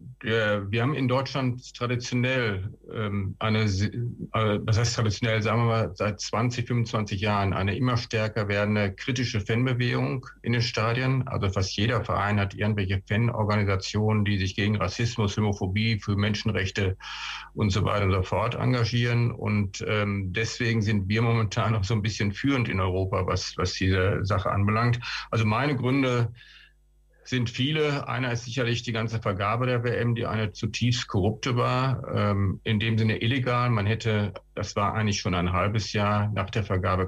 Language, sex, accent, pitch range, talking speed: Dutch, male, German, 100-120 Hz, 165 wpm